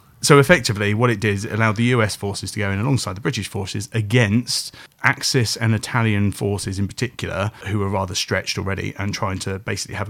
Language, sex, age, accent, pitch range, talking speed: English, male, 30-49, British, 100-125 Hz, 210 wpm